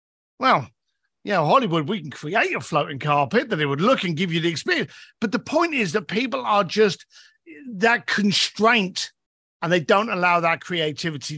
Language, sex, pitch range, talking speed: English, male, 175-230 Hz, 185 wpm